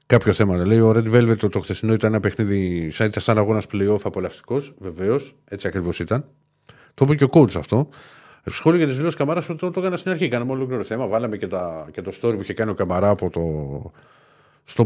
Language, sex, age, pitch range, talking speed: Greek, male, 50-69, 95-140 Hz, 220 wpm